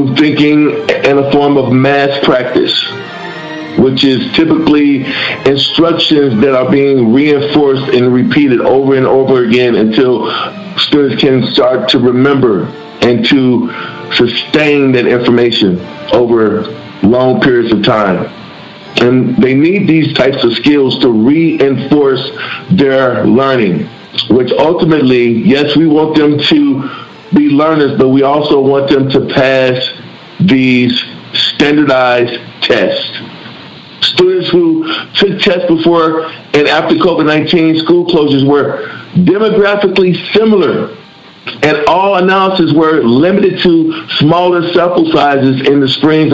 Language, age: English, 50-69